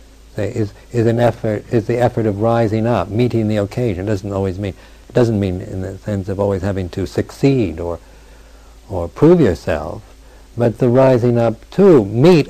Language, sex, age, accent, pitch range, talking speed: English, male, 60-79, American, 85-115 Hz, 180 wpm